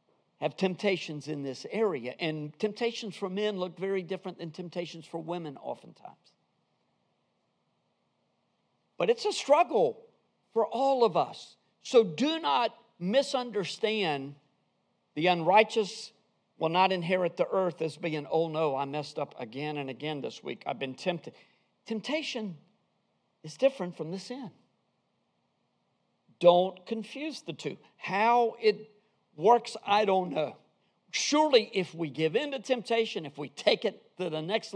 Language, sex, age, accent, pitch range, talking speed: English, male, 50-69, American, 170-235 Hz, 140 wpm